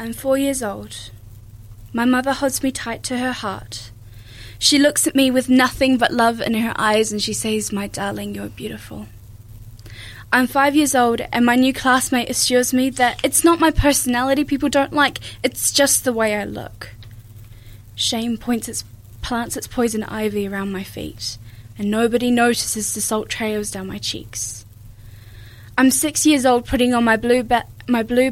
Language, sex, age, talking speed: English, female, 10-29, 180 wpm